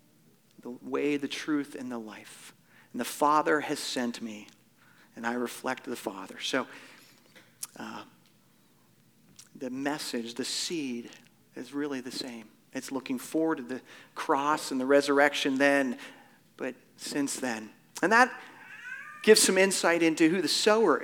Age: 40-59